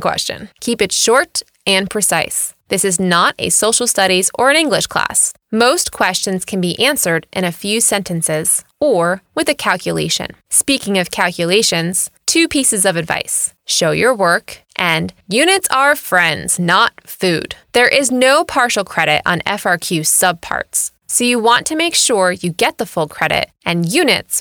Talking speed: 160 wpm